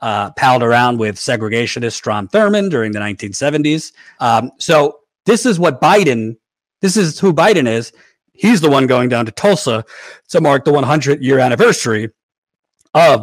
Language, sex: English, male